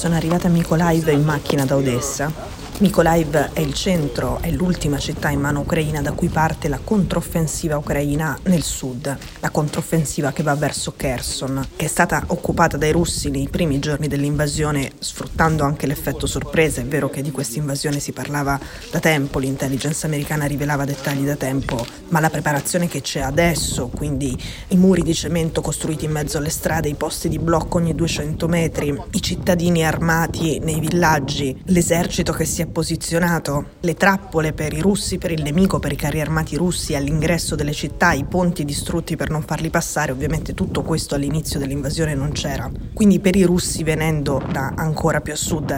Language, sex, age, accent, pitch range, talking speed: Italian, female, 20-39, native, 145-165 Hz, 175 wpm